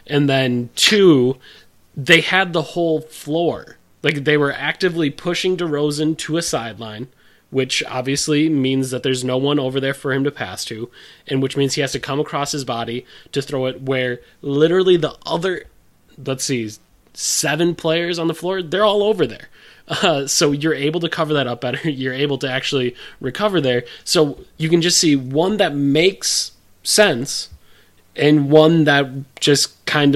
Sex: male